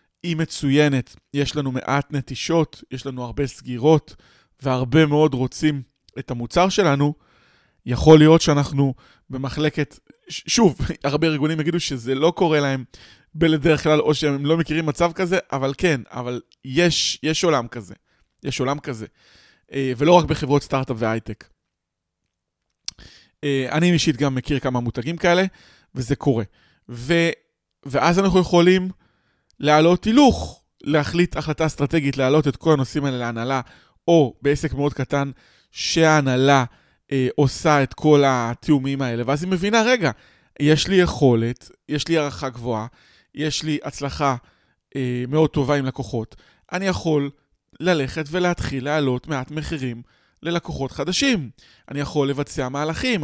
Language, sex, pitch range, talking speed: Hebrew, male, 130-160 Hz, 135 wpm